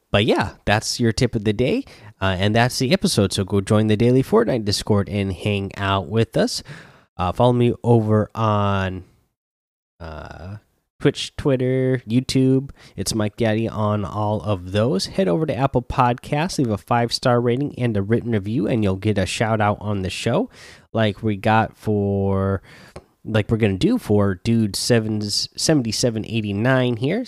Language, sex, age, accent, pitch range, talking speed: English, male, 20-39, American, 100-120 Hz, 170 wpm